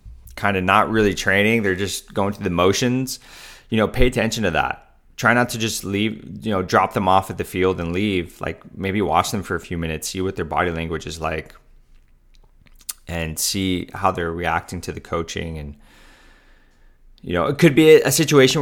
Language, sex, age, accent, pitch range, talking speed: English, male, 20-39, American, 80-100 Hz, 205 wpm